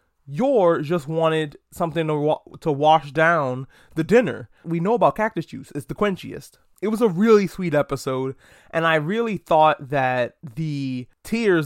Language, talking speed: English, 165 wpm